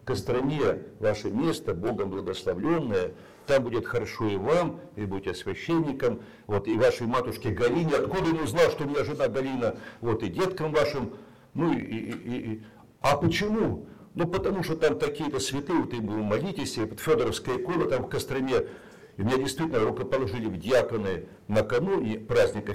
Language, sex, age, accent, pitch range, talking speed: Russian, male, 60-79, native, 115-165 Hz, 160 wpm